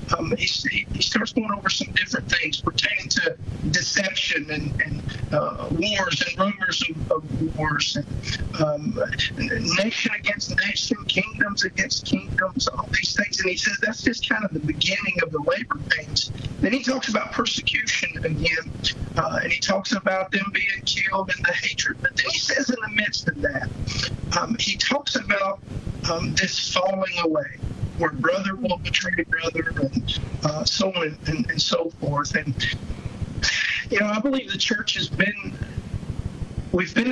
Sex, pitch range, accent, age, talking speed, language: male, 145-200 Hz, American, 50-69, 165 wpm, English